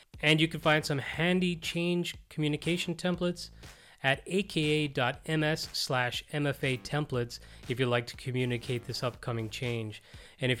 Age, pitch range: 30-49, 120-150 Hz